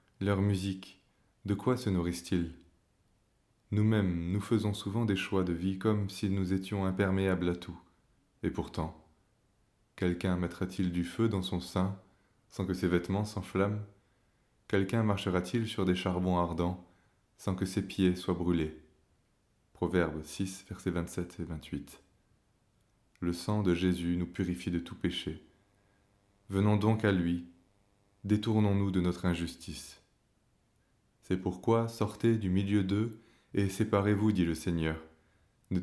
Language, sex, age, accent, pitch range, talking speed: French, male, 20-39, French, 85-100 Hz, 140 wpm